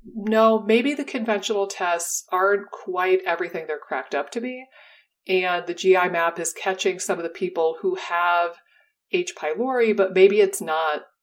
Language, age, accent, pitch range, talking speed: English, 40-59, American, 170-220 Hz, 165 wpm